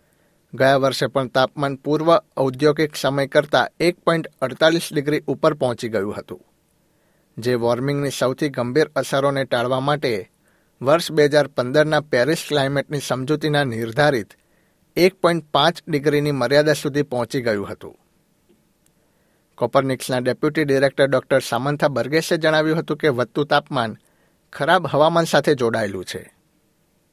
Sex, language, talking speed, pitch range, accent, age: male, Gujarati, 110 wpm, 130-155 Hz, native, 60-79